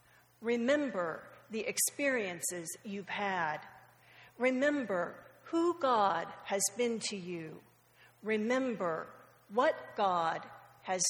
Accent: American